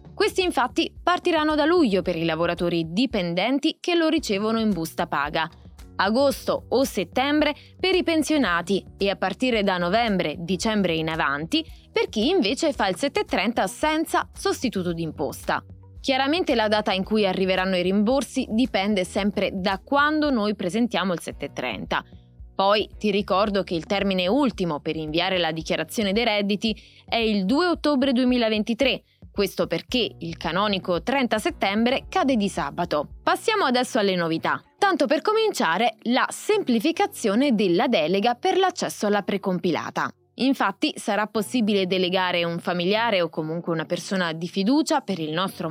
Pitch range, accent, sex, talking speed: 180-270 Hz, native, female, 145 wpm